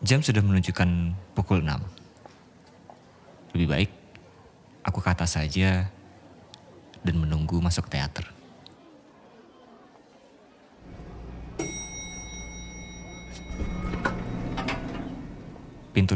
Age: 20-39